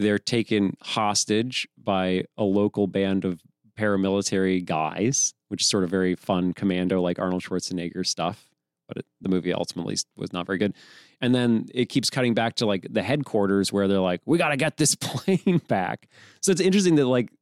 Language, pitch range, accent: English, 110-150 Hz, American